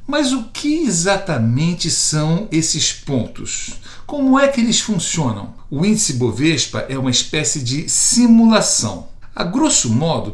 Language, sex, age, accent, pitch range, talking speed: Portuguese, male, 60-79, Brazilian, 120-180 Hz, 135 wpm